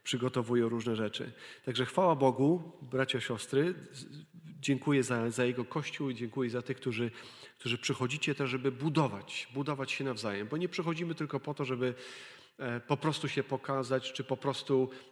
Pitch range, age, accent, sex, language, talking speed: 130-160 Hz, 40-59, native, male, Polish, 160 wpm